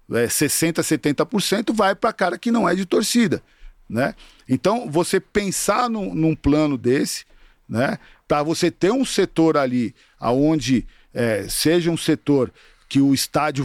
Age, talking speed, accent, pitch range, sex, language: 50-69, 150 wpm, Brazilian, 150-230 Hz, male, Portuguese